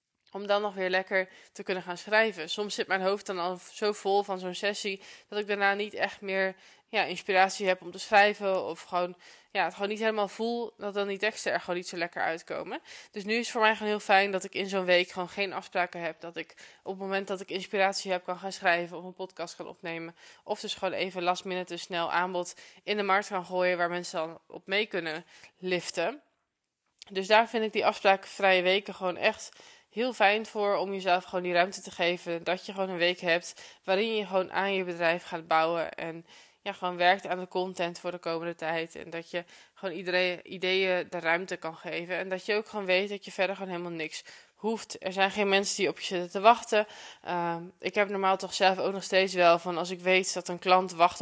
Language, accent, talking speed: Dutch, Dutch, 235 wpm